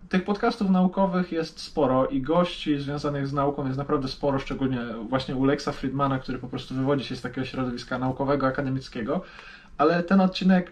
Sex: male